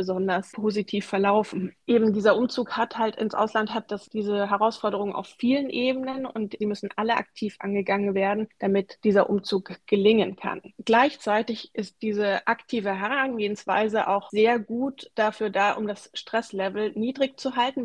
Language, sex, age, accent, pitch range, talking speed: German, female, 20-39, German, 200-225 Hz, 150 wpm